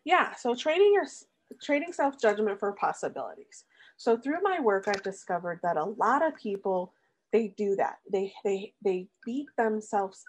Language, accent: English, American